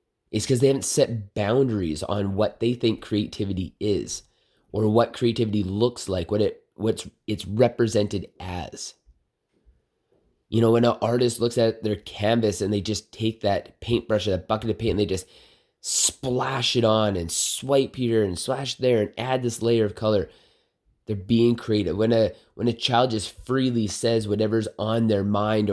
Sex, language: male, English